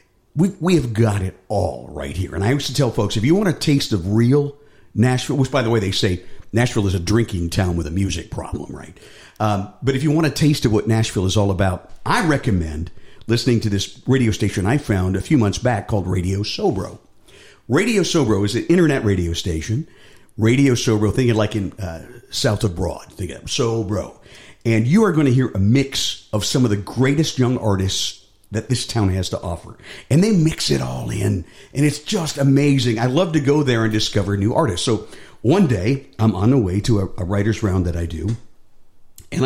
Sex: male